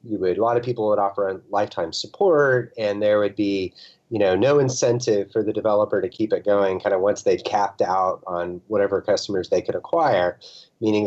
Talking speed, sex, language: 210 wpm, male, English